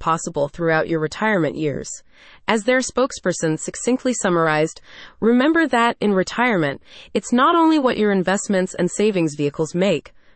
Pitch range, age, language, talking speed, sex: 165-235 Hz, 30-49, English, 140 wpm, female